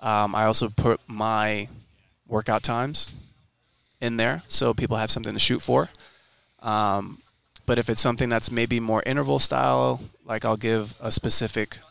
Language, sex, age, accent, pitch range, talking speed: English, male, 20-39, American, 110-120 Hz, 155 wpm